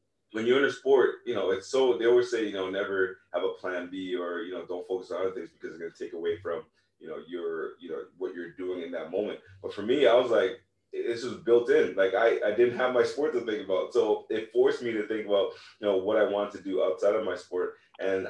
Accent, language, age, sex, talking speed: American, English, 20-39, male, 275 wpm